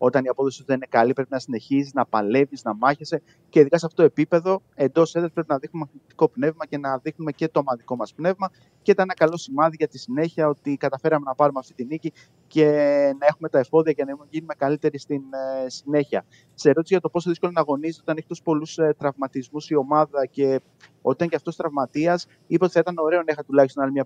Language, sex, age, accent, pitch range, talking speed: Greek, male, 30-49, native, 140-165 Hz, 225 wpm